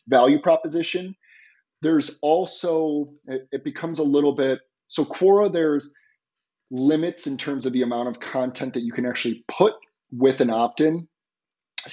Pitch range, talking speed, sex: 120-155 Hz, 150 wpm, male